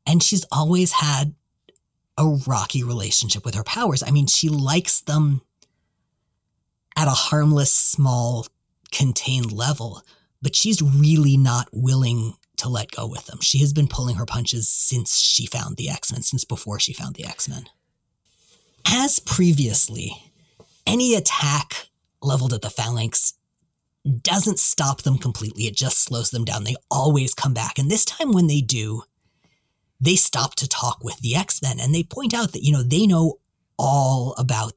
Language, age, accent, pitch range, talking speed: English, 30-49, American, 120-155 Hz, 160 wpm